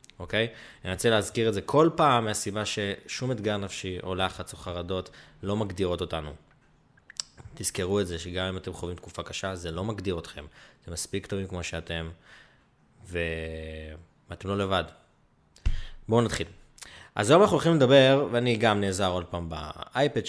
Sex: male